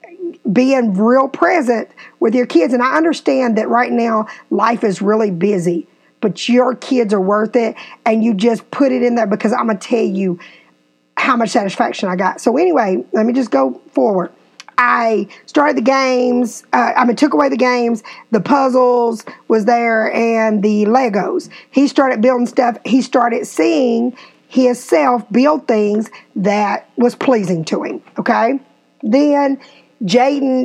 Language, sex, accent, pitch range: English, female, American, 210-265 Hz